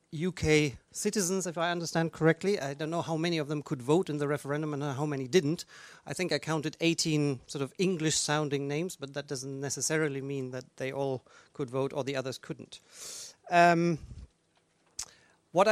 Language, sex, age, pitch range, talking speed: English, male, 40-59, 140-165 Hz, 180 wpm